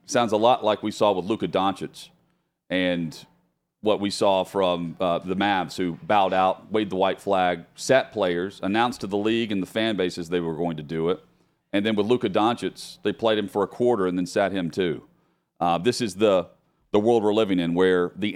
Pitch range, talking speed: 100-140 Hz, 220 wpm